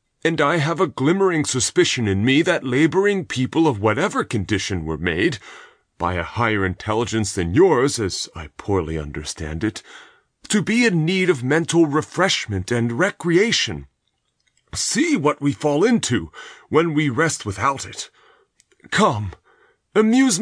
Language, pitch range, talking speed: English, 95-160 Hz, 140 wpm